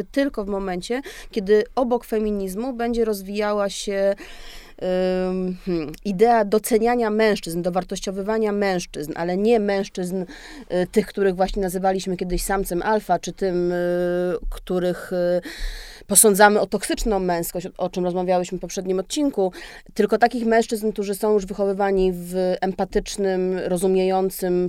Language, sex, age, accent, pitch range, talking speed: Polish, female, 30-49, native, 180-210 Hz, 115 wpm